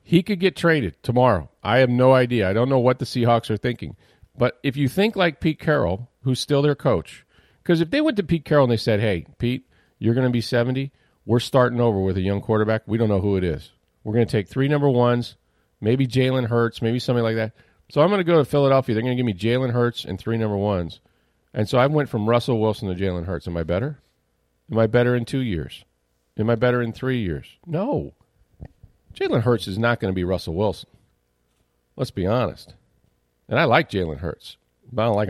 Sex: male